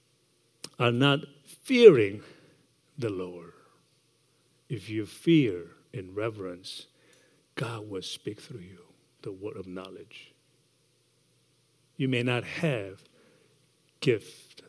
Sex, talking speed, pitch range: male, 100 wpm, 120-150 Hz